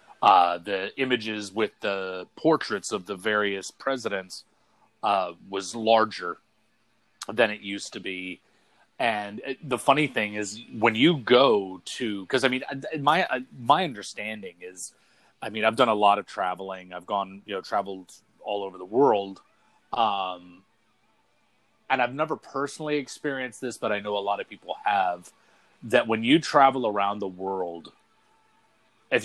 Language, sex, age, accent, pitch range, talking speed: English, male, 30-49, American, 100-130 Hz, 150 wpm